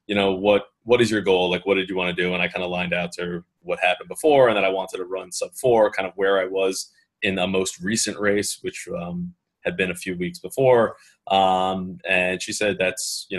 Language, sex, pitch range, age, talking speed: English, male, 90-110 Hz, 20-39, 255 wpm